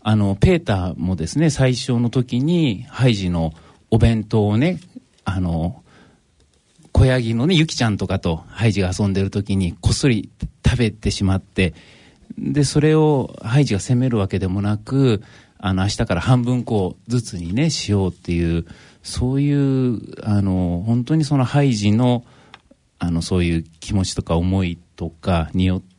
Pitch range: 90-120 Hz